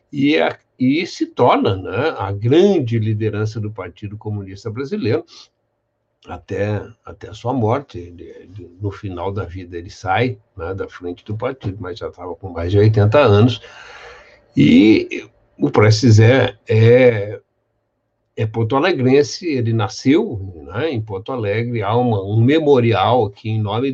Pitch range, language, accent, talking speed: 105-130 Hz, Portuguese, Brazilian, 150 wpm